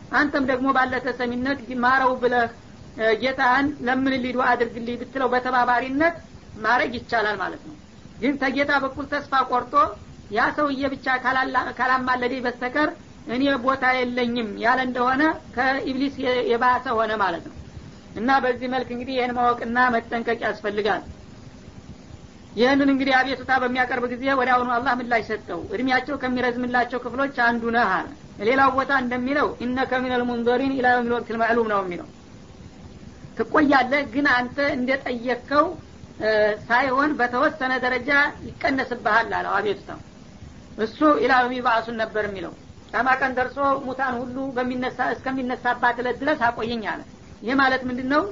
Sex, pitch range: female, 245-270 Hz